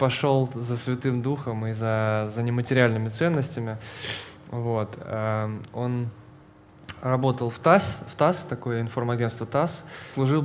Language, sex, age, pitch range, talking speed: Russian, male, 20-39, 115-135 Hz, 115 wpm